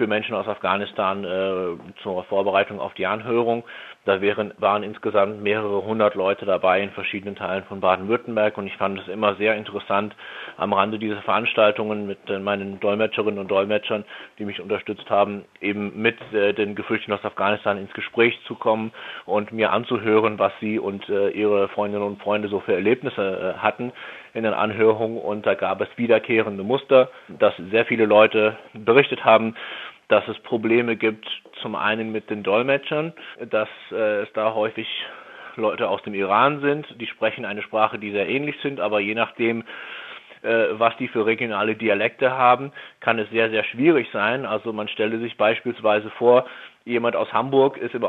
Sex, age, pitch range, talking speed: male, 30-49, 105-115 Hz, 175 wpm